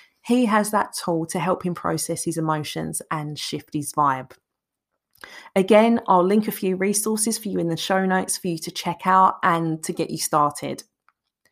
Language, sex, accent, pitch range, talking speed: English, female, British, 165-220 Hz, 190 wpm